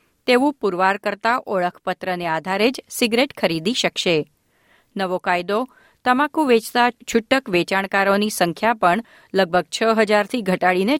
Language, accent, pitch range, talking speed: Gujarati, native, 180-230 Hz, 115 wpm